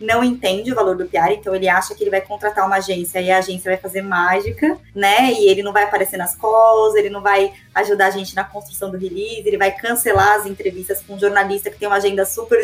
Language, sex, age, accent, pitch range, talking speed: Portuguese, female, 20-39, Brazilian, 200-240 Hz, 245 wpm